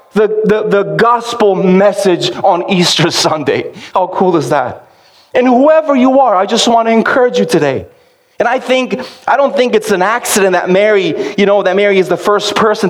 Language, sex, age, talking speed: English, male, 30-49, 195 wpm